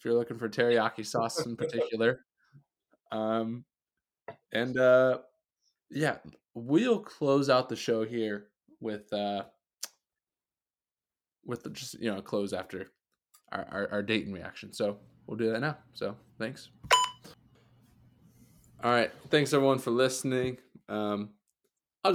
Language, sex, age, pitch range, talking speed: English, male, 20-39, 100-120 Hz, 125 wpm